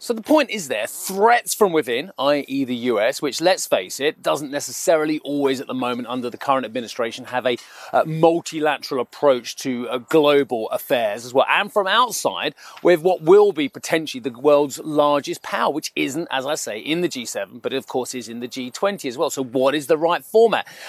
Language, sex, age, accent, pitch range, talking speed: English, male, 30-49, British, 135-185 Hz, 205 wpm